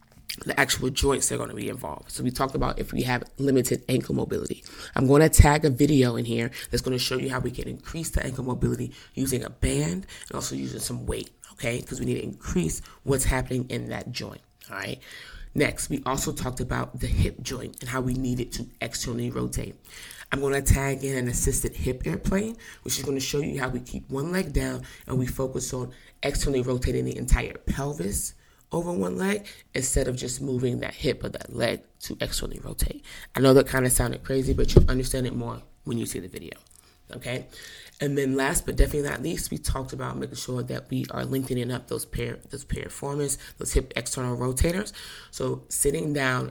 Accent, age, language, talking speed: American, 20-39, English, 215 wpm